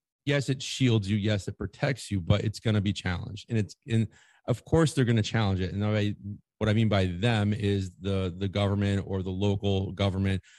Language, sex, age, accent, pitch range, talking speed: English, male, 30-49, American, 100-115 Hz, 225 wpm